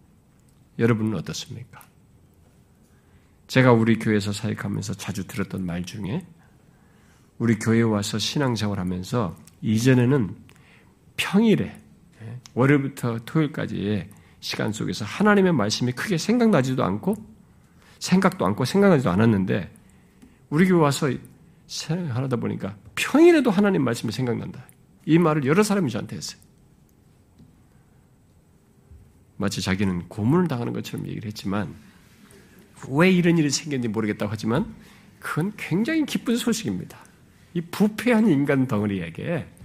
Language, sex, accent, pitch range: Korean, male, native, 105-170 Hz